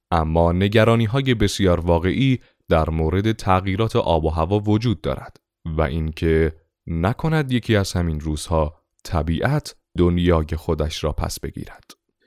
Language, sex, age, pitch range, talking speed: Persian, male, 30-49, 85-115 Hz, 125 wpm